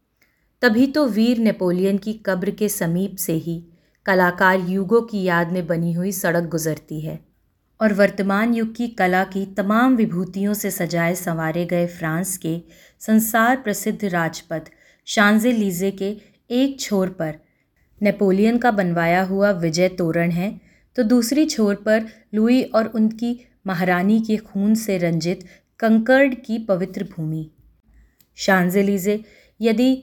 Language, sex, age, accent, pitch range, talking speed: Hindi, female, 30-49, native, 175-225 Hz, 130 wpm